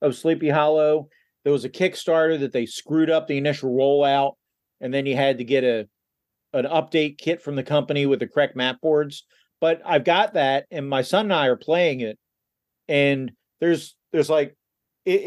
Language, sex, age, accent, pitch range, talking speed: English, male, 40-59, American, 125-155 Hz, 195 wpm